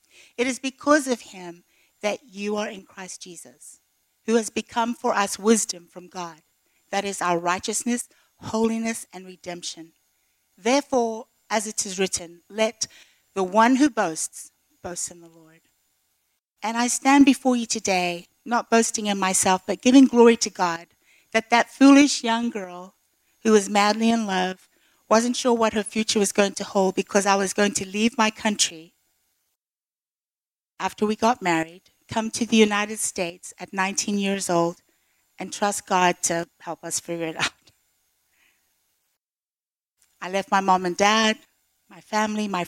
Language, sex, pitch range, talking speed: English, female, 170-220 Hz, 160 wpm